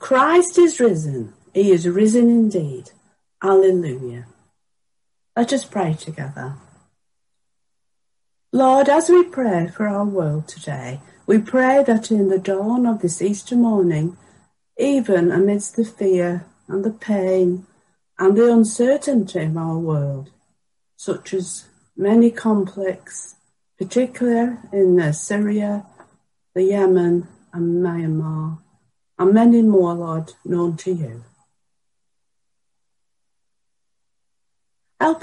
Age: 50-69